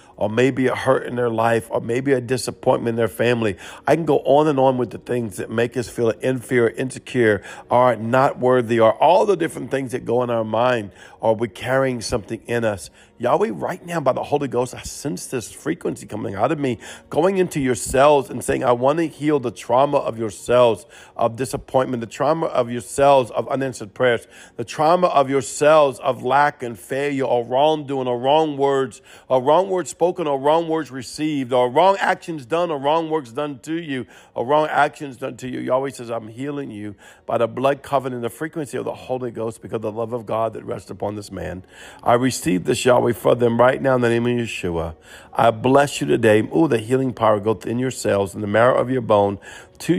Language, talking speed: English, 220 wpm